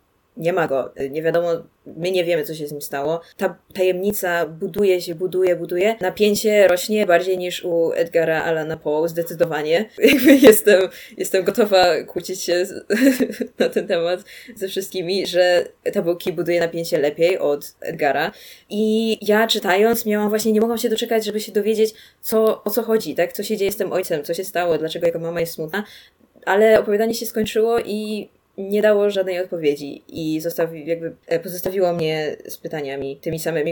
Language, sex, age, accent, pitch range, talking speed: Polish, female, 20-39, native, 165-210 Hz, 170 wpm